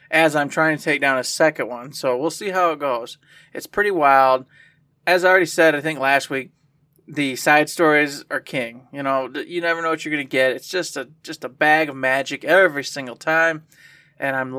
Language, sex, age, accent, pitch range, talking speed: English, male, 20-39, American, 140-160 Hz, 220 wpm